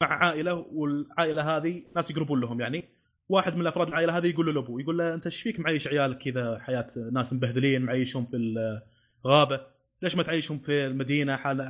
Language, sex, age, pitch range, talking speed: Arabic, male, 20-39, 130-155 Hz, 185 wpm